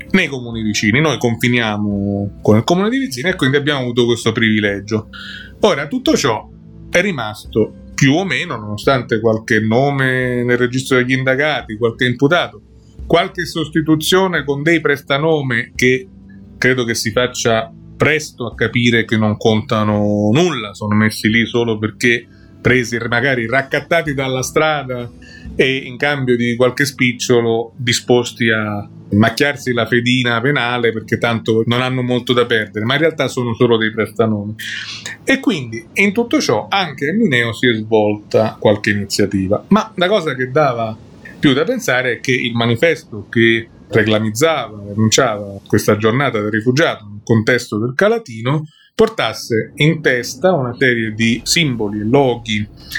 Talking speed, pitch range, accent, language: 150 wpm, 110-140 Hz, native, Italian